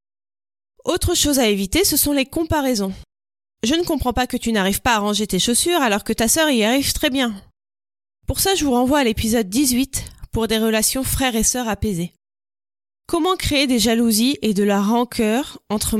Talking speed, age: 195 wpm, 20-39